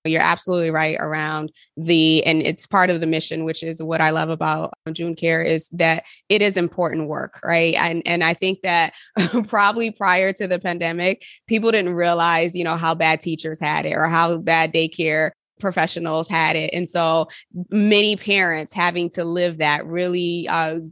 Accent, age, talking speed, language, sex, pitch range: American, 20-39, 180 wpm, English, female, 160-180 Hz